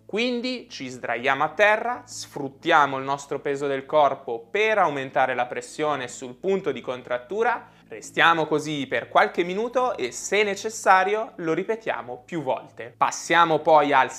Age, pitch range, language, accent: 20-39, 135-210 Hz, Italian, native